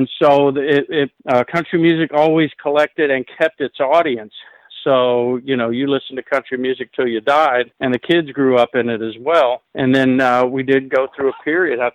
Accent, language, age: American, English, 50-69